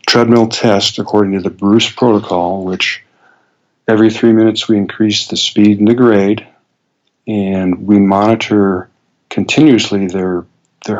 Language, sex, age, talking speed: English, male, 50-69, 130 wpm